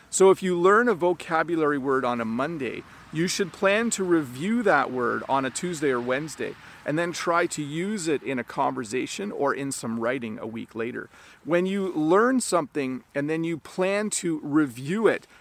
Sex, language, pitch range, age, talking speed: male, English, 130-185 Hz, 40-59, 190 wpm